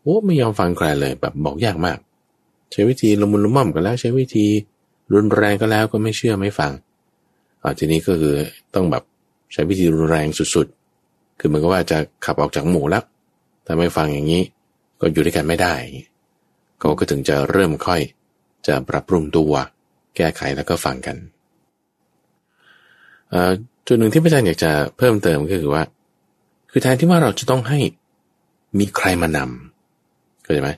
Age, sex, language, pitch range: 20-39, male, English, 85-130 Hz